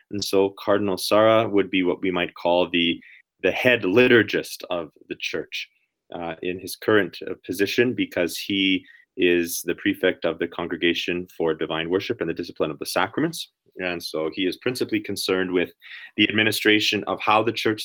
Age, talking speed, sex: 30-49, 175 wpm, male